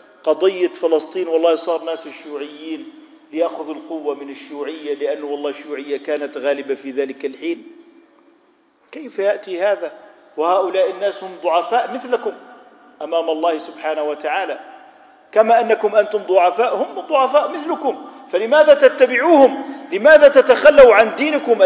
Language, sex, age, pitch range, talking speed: Arabic, male, 50-69, 175-280 Hz, 120 wpm